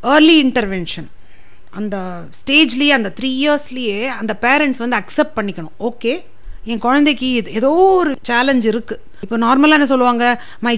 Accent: native